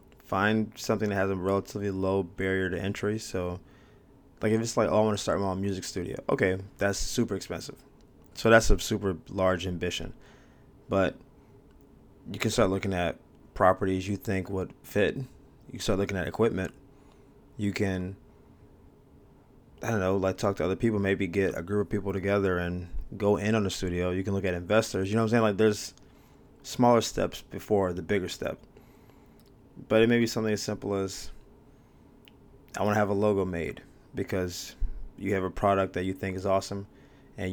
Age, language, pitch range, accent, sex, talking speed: 20-39, English, 95-110 Hz, American, male, 185 wpm